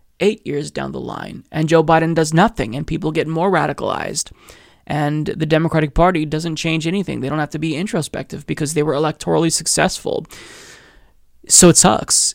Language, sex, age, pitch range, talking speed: English, male, 20-39, 150-170 Hz, 175 wpm